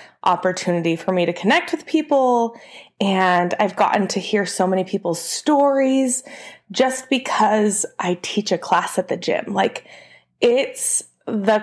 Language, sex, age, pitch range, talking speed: English, female, 20-39, 190-265 Hz, 145 wpm